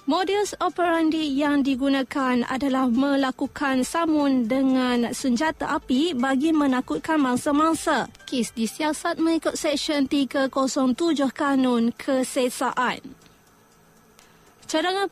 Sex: female